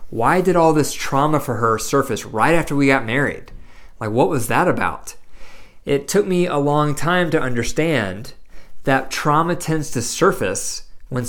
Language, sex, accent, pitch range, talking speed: English, male, American, 125-150 Hz, 170 wpm